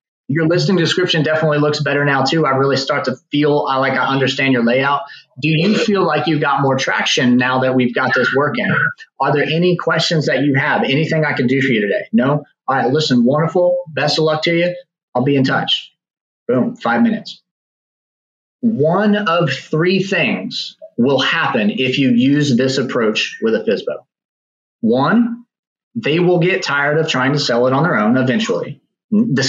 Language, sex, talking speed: English, male, 190 wpm